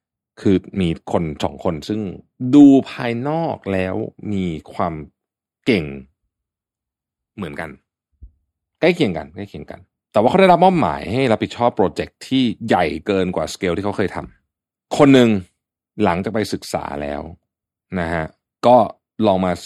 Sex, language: male, Thai